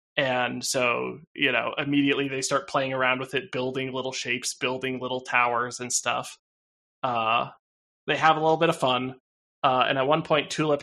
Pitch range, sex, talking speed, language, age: 125-150 Hz, male, 185 wpm, English, 20-39